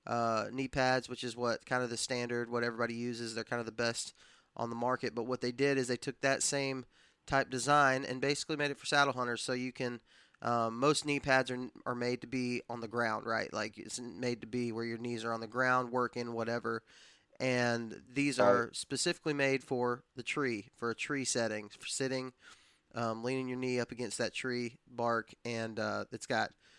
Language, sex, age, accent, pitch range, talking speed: English, male, 20-39, American, 120-135 Hz, 215 wpm